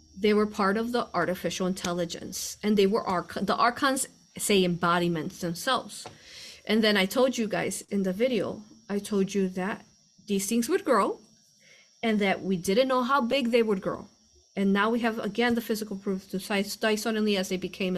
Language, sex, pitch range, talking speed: English, female, 185-235 Hz, 185 wpm